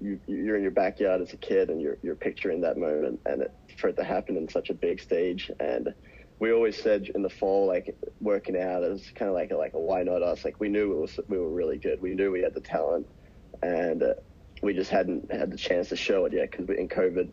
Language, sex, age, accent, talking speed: English, male, 20-39, Australian, 265 wpm